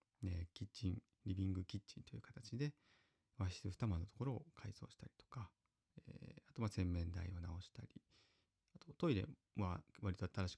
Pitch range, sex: 95-115 Hz, male